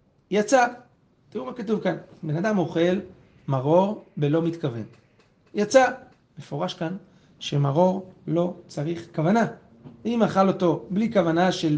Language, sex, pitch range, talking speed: Hebrew, male, 150-190 Hz, 120 wpm